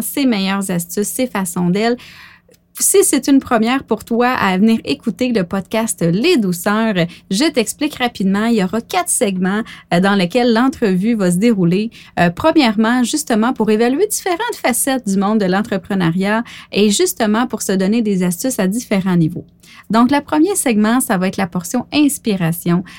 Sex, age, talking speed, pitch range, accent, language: female, 30-49, 165 wpm, 195-255 Hz, Canadian, French